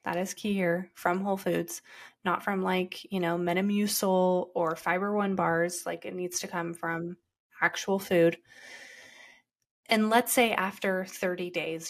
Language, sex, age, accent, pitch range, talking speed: English, female, 20-39, American, 175-205 Hz, 155 wpm